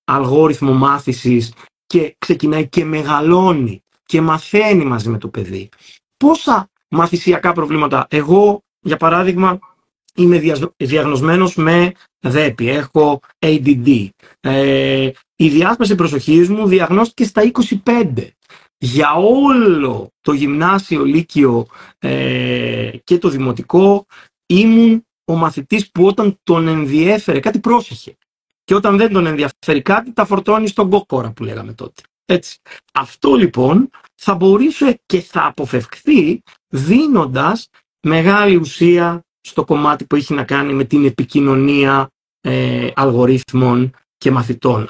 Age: 30-49